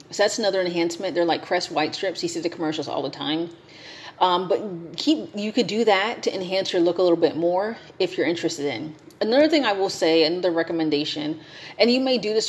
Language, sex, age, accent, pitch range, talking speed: English, female, 30-49, American, 155-210 Hz, 220 wpm